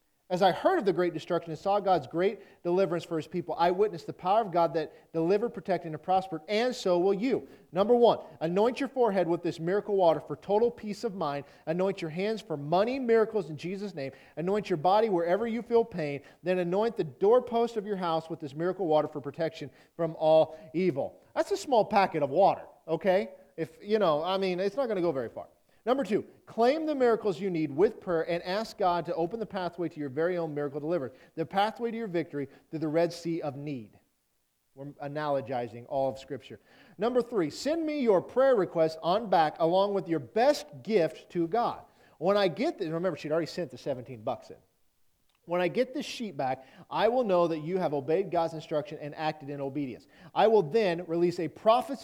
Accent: American